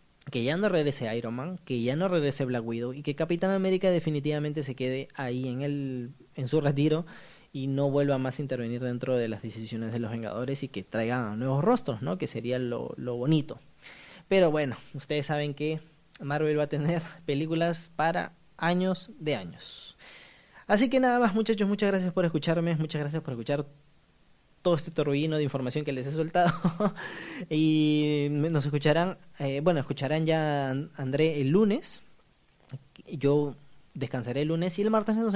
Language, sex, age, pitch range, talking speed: Spanish, male, 20-39, 135-175 Hz, 175 wpm